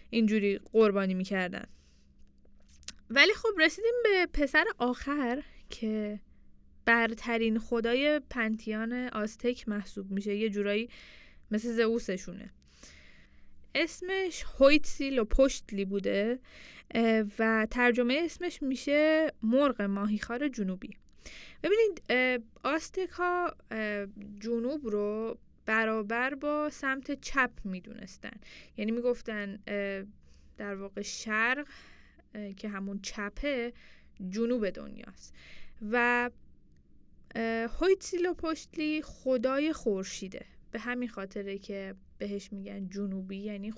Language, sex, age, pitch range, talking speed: Persian, female, 10-29, 205-285 Hz, 90 wpm